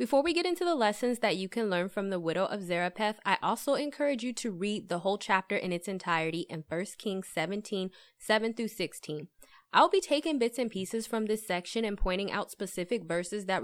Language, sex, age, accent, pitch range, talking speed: English, female, 20-39, American, 185-245 Hz, 210 wpm